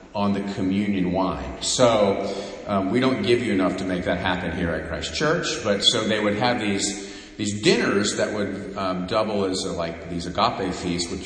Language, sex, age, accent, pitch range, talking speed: English, male, 50-69, American, 90-140 Hz, 205 wpm